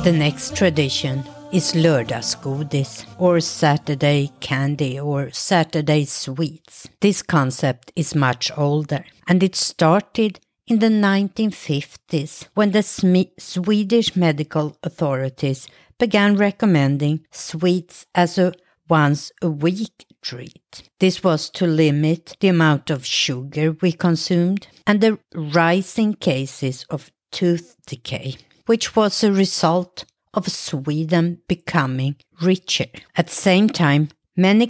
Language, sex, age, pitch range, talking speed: English, female, 50-69, 145-185 Hz, 115 wpm